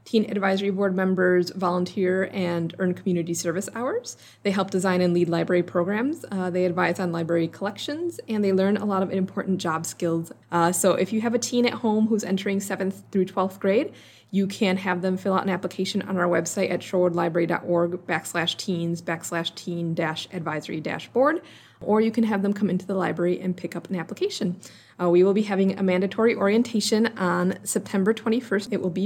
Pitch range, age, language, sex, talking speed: 175-210 Hz, 20-39, English, female, 200 wpm